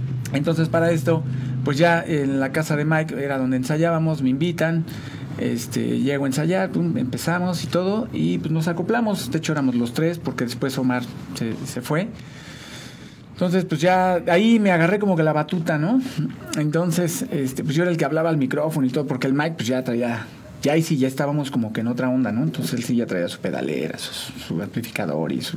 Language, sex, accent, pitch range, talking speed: Spanish, male, Mexican, 130-170 Hz, 215 wpm